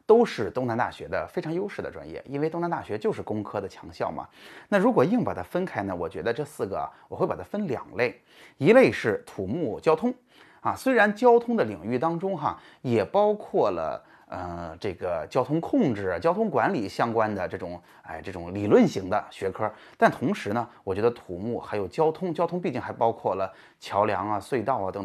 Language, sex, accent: Chinese, male, native